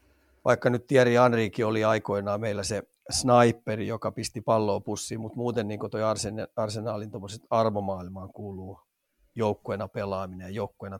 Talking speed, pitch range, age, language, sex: 125 wpm, 105-120 Hz, 30-49, Finnish, male